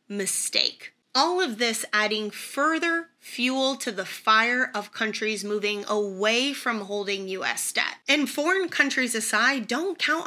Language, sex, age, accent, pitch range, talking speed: English, female, 30-49, American, 205-265 Hz, 140 wpm